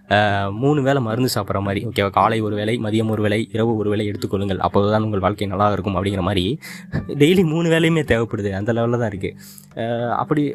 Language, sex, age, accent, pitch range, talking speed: Tamil, male, 20-39, native, 105-140 Hz, 190 wpm